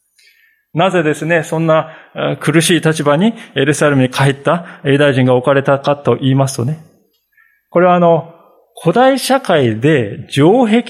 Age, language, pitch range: 20-39, Japanese, 130-185 Hz